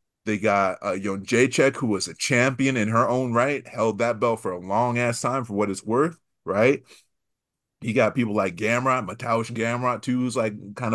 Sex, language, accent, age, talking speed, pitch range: male, English, American, 30-49, 205 wpm, 105-125 Hz